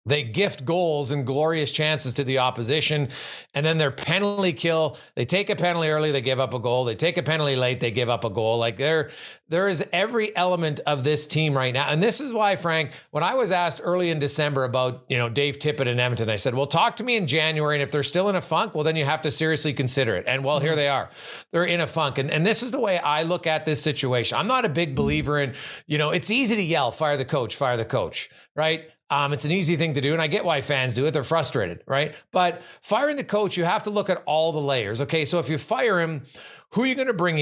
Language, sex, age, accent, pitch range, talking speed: English, male, 40-59, American, 140-175 Hz, 270 wpm